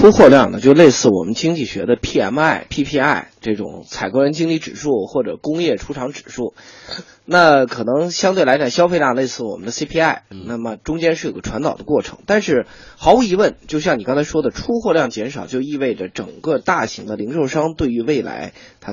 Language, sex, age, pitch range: Chinese, male, 20-39, 115-165 Hz